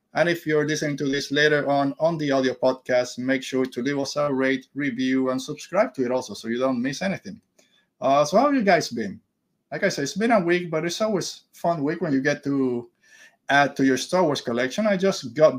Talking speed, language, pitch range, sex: 245 wpm, English, 130-170 Hz, male